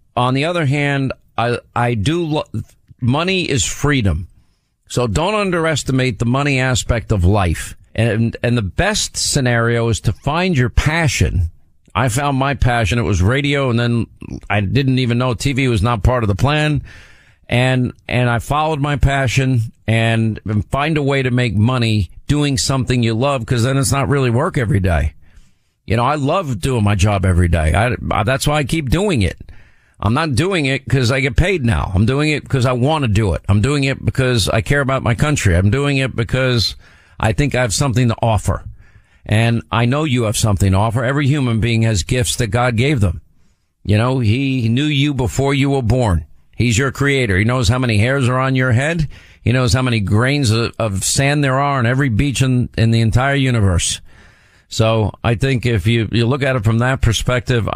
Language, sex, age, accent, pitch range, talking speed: English, male, 50-69, American, 105-135 Hz, 205 wpm